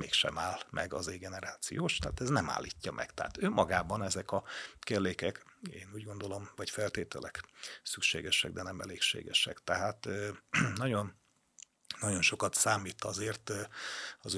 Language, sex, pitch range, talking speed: Hungarian, male, 100-110 Hz, 135 wpm